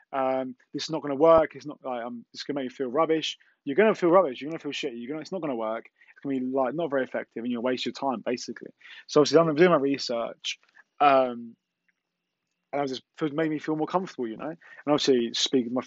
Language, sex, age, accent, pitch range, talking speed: English, male, 20-39, British, 125-155 Hz, 250 wpm